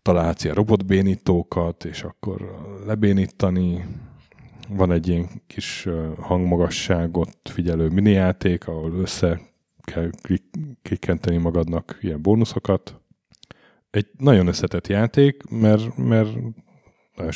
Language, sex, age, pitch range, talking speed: Hungarian, male, 30-49, 85-105 Hz, 95 wpm